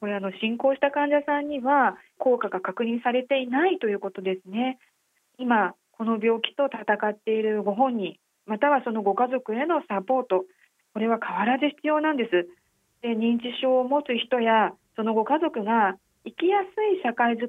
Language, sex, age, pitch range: Japanese, female, 40-59, 195-265 Hz